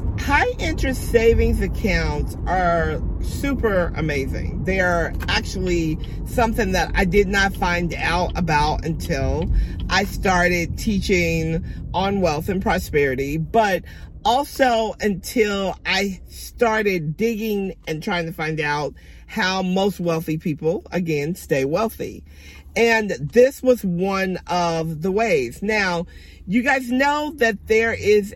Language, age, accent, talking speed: English, 50-69, American, 125 wpm